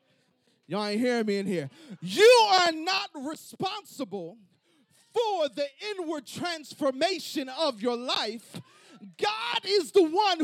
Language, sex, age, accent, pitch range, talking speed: English, male, 40-59, American, 245-340 Hz, 120 wpm